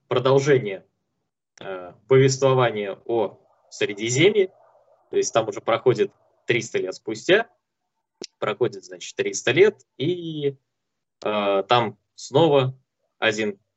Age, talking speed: 20-39, 95 wpm